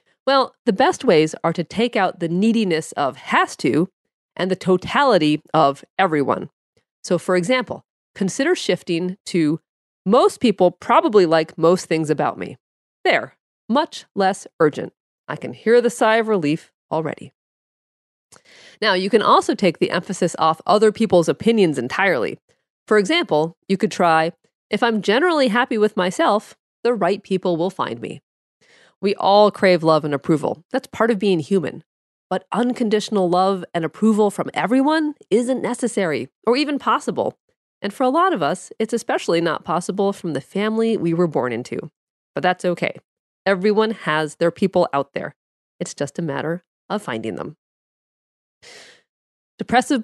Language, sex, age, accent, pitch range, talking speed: English, female, 40-59, American, 170-230 Hz, 155 wpm